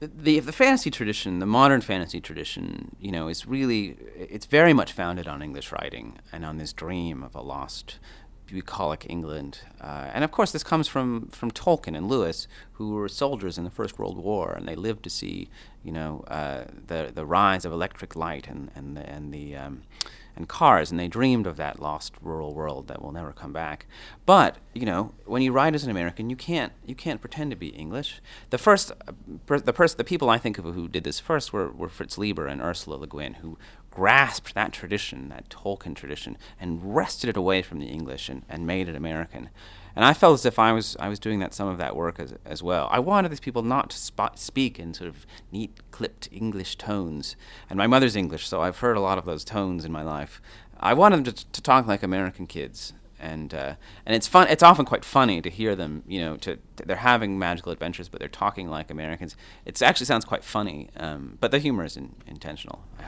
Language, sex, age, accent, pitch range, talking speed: English, male, 30-49, American, 80-115 Hz, 220 wpm